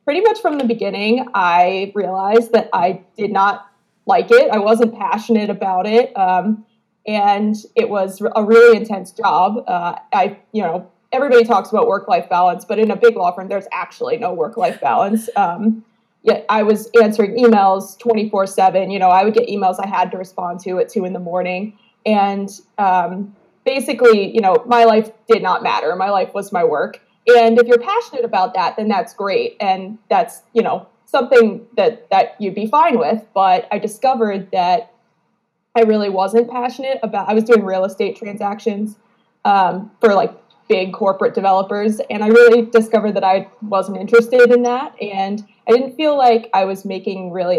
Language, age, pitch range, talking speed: English, 20-39, 195-235 Hz, 180 wpm